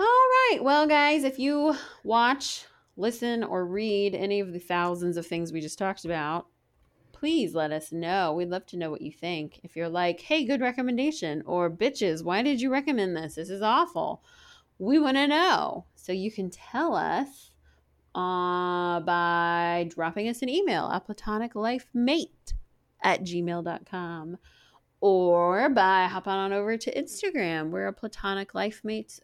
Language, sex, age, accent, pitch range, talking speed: English, female, 20-39, American, 175-255 Hz, 160 wpm